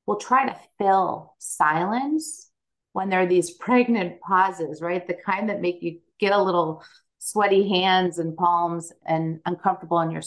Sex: female